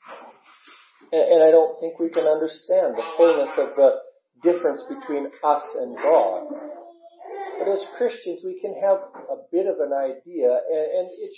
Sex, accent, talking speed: male, American, 155 wpm